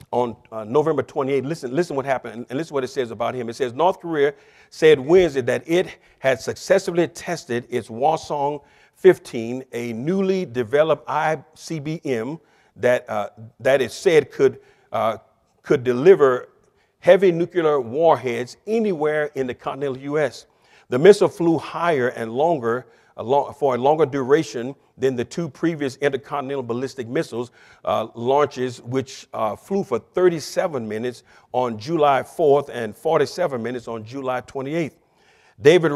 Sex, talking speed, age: male, 145 wpm, 50-69